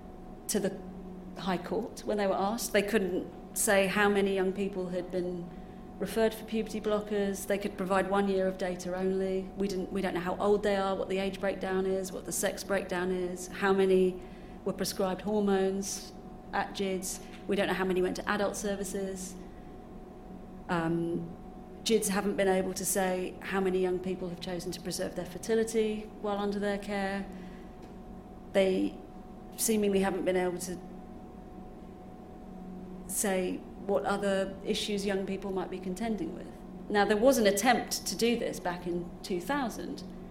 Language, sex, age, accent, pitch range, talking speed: English, female, 30-49, British, 185-200 Hz, 165 wpm